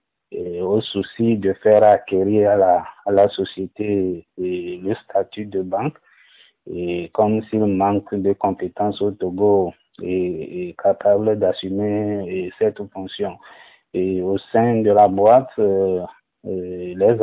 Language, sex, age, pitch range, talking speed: French, male, 50-69, 95-110 Hz, 135 wpm